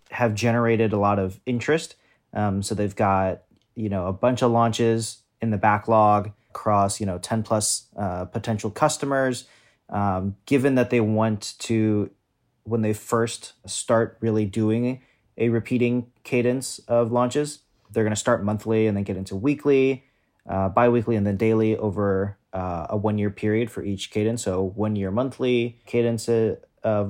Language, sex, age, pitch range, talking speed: English, male, 30-49, 100-120 Hz, 165 wpm